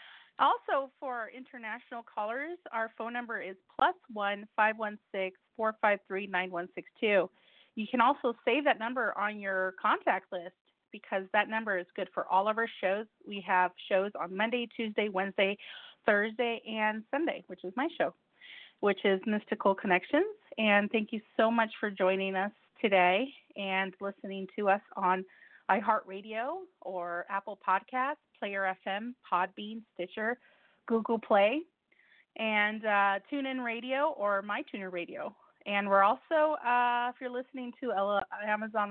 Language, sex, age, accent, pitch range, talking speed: English, female, 30-49, American, 195-245 Hz, 150 wpm